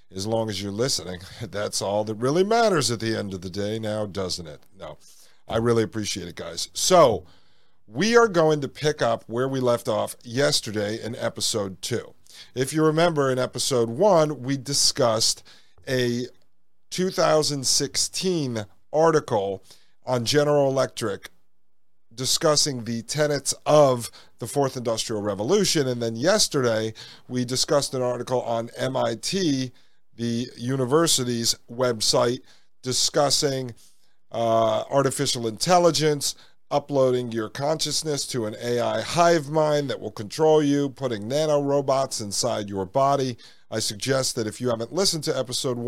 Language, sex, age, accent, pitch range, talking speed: English, male, 40-59, American, 110-145 Hz, 135 wpm